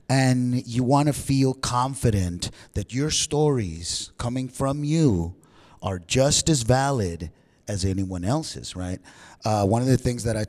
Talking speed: 155 wpm